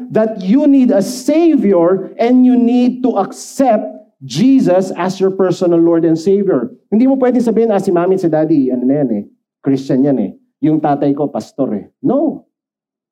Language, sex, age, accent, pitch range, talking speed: Filipino, male, 50-69, native, 160-220 Hz, 160 wpm